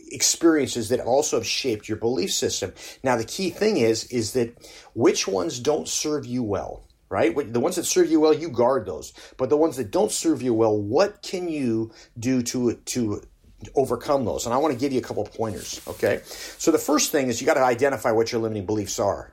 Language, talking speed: English, 220 wpm